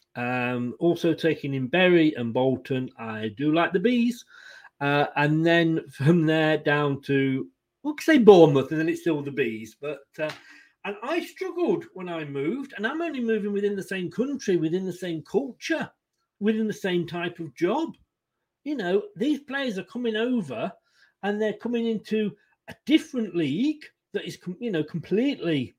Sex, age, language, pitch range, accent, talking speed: male, 40-59, English, 160-235 Hz, British, 170 wpm